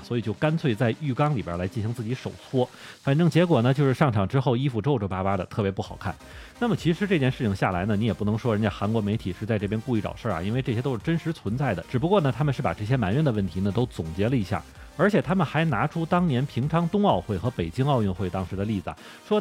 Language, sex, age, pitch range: Chinese, male, 30-49, 100-145 Hz